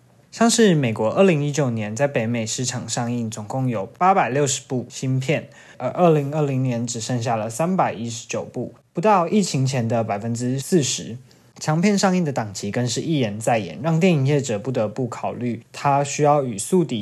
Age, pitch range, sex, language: 20-39, 120-150 Hz, male, Chinese